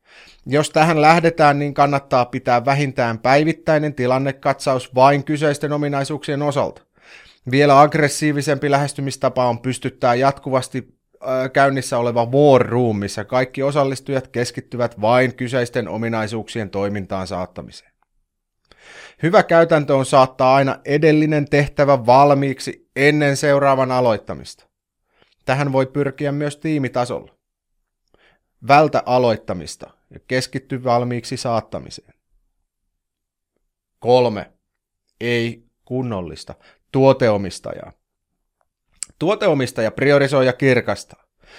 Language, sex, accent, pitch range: Finnish, male, native, 125-145 Hz